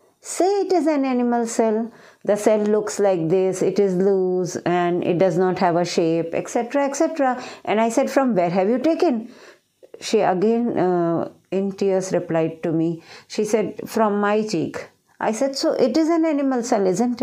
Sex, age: female, 50-69